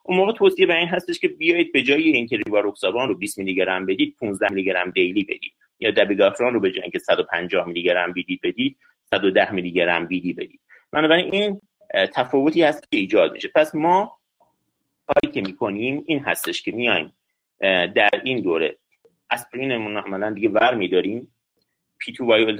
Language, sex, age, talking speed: Persian, male, 30-49, 180 wpm